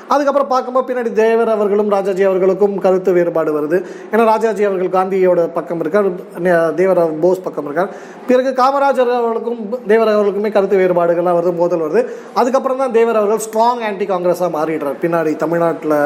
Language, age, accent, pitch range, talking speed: Tamil, 20-39, native, 180-230 Hz, 145 wpm